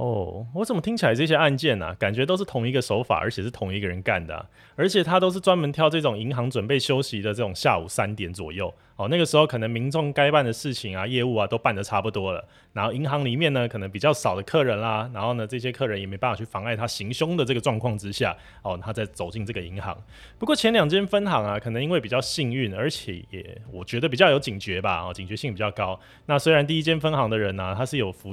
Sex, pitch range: male, 100-135 Hz